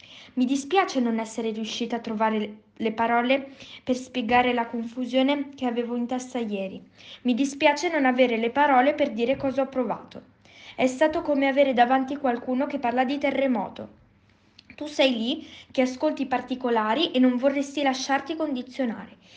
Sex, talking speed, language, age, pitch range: female, 160 wpm, Italian, 20-39, 235-275 Hz